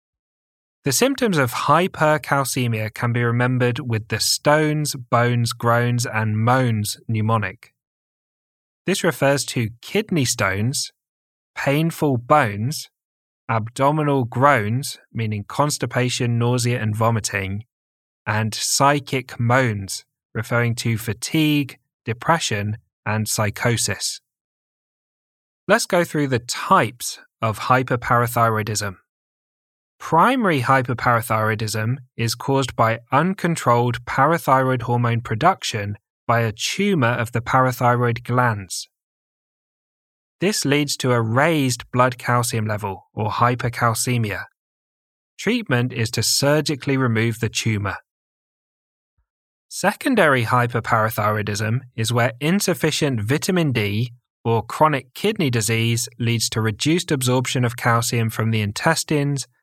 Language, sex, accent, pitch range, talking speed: English, male, British, 110-140 Hz, 100 wpm